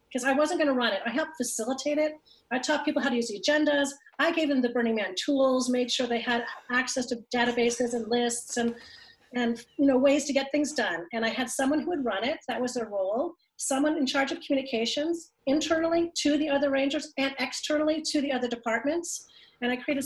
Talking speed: 225 wpm